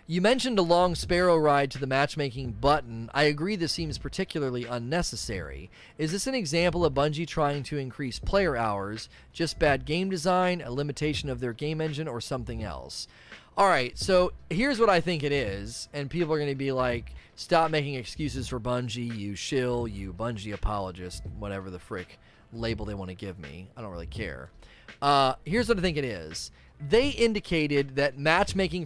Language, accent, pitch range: English, American, 115-160 Hz